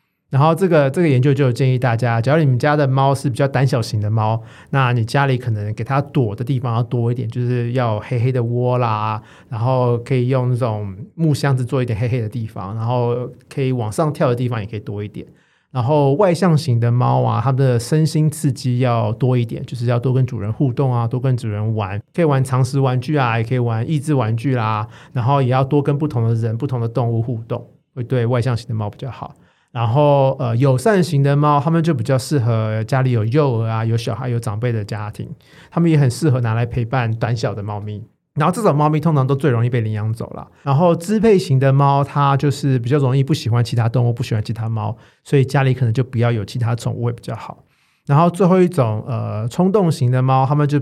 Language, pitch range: Chinese, 115-140 Hz